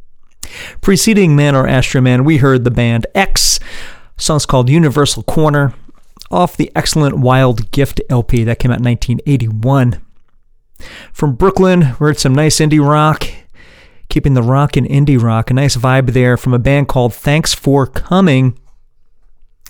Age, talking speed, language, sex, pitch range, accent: 40-59, 150 wpm, English, male, 120-155 Hz, American